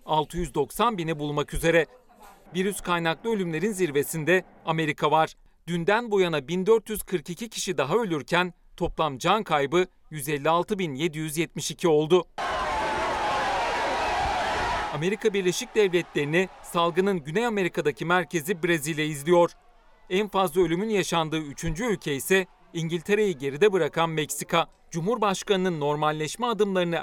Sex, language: male, Turkish